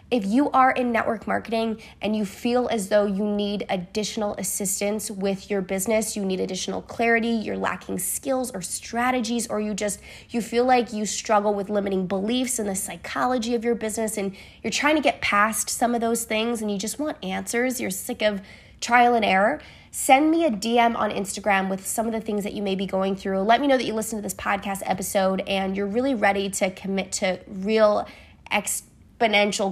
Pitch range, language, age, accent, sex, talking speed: 195-230 Hz, English, 20-39, American, female, 205 wpm